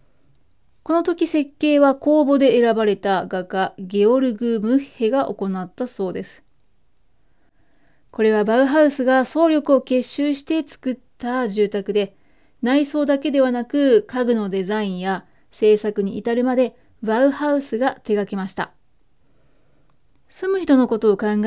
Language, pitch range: Japanese, 200-265 Hz